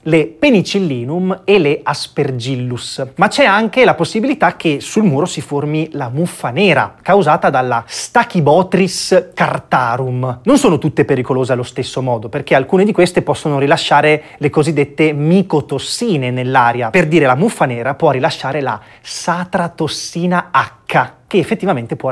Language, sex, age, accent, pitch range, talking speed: Italian, male, 30-49, native, 130-180 Hz, 140 wpm